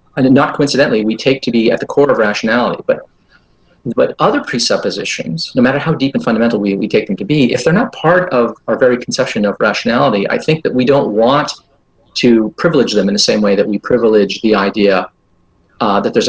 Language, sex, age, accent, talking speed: English, male, 40-59, American, 215 wpm